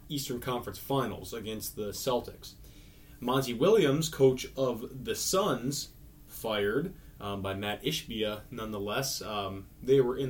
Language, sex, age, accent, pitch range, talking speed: English, male, 20-39, American, 105-125 Hz, 130 wpm